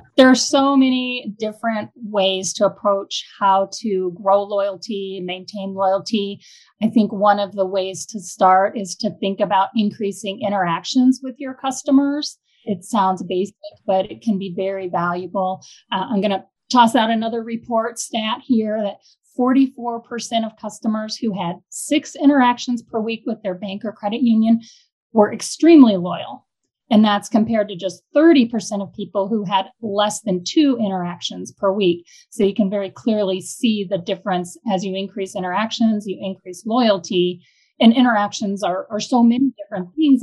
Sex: female